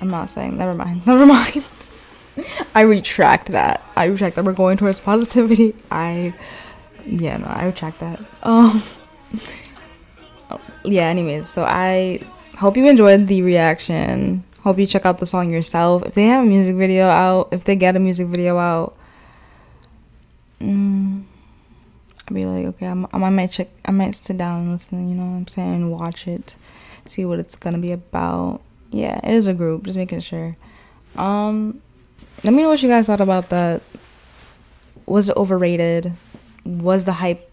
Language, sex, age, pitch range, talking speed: English, female, 10-29, 175-205 Hz, 175 wpm